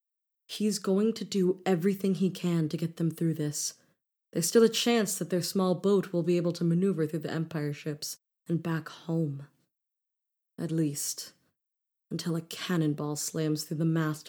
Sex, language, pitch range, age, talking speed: female, English, 160-185 Hz, 20-39, 170 wpm